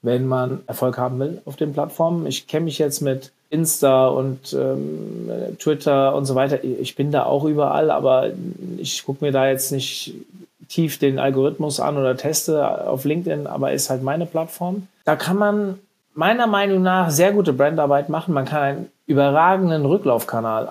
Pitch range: 140-180 Hz